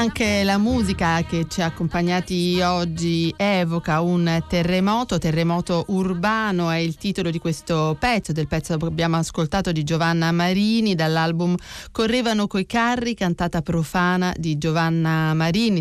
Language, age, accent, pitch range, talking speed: Italian, 40-59, native, 165-190 Hz, 135 wpm